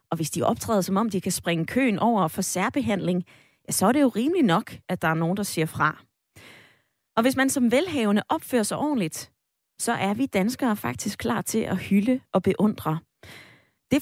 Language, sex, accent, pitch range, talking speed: Danish, female, native, 180-245 Hz, 200 wpm